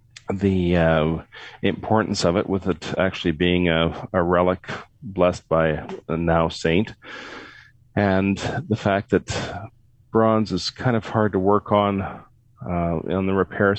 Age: 40-59